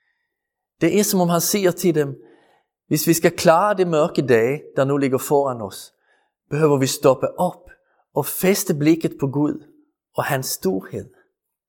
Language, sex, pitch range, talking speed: Danish, male, 130-185 Hz, 165 wpm